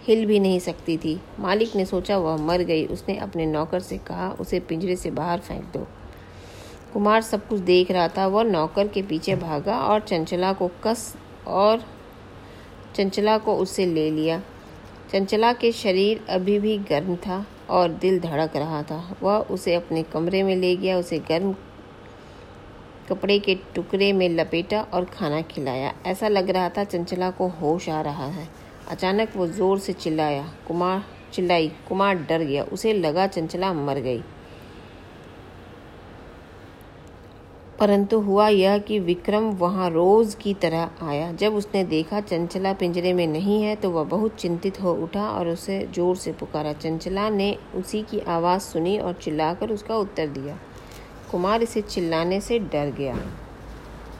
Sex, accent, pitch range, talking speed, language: female, native, 160-200 Hz, 160 wpm, Hindi